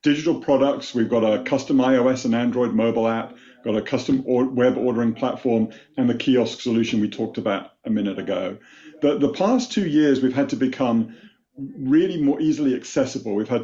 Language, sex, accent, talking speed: English, male, British, 185 wpm